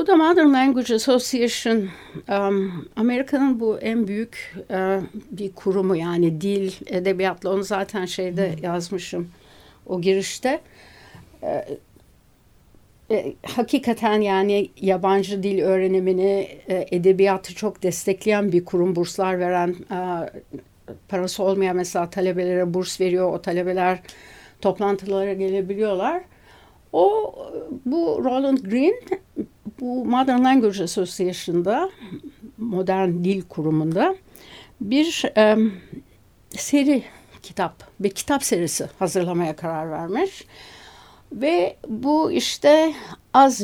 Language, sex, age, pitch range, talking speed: Turkish, female, 60-79, 185-235 Hz, 90 wpm